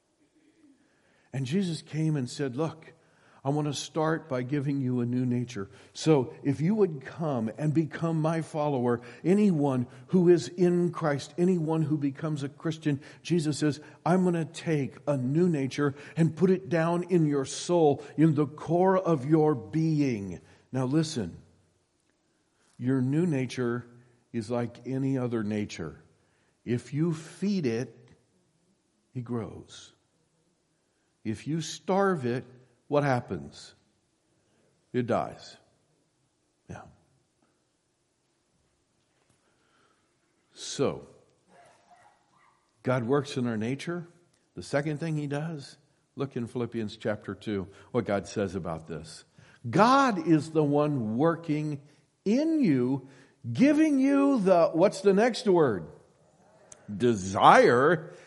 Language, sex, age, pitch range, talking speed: English, male, 50-69, 125-165 Hz, 120 wpm